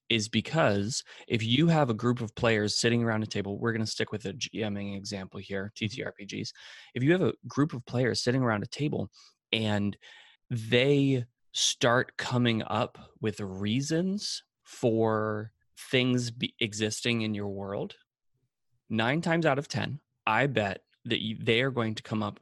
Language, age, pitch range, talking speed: English, 20-39, 105-130 Hz, 165 wpm